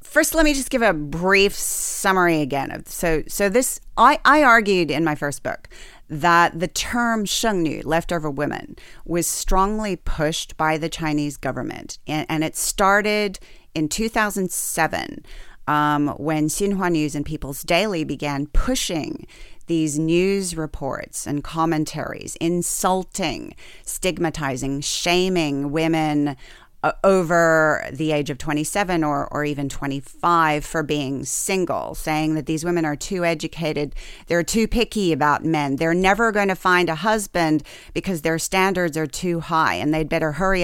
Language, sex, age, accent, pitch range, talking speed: English, female, 30-49, American, 150-185 Hz, 150 wpm